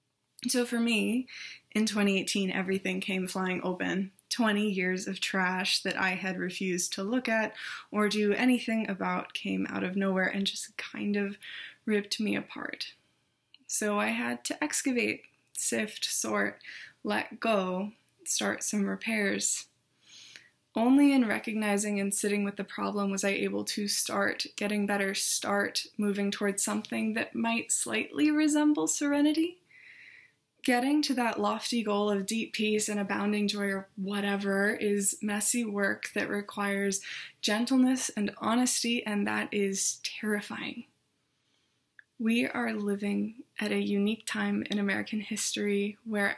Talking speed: 140 wpm